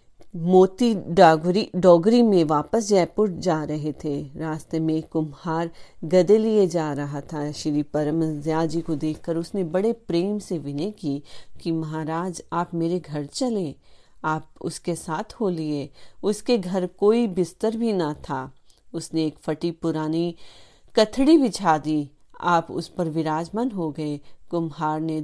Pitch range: 155-180 Hz